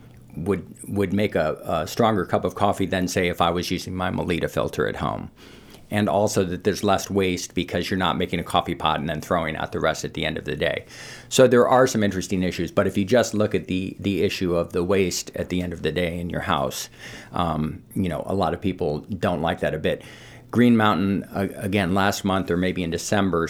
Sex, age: male, 50-69